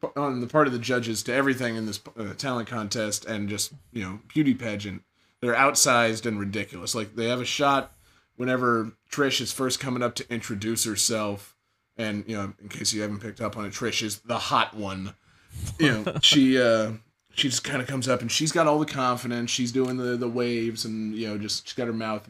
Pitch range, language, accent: 105-130 Hz, English, American